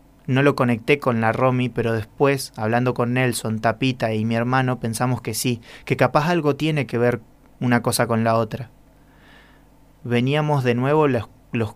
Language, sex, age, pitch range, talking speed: Spanish, male, 20-39, 120-140 Hz, 175 wpm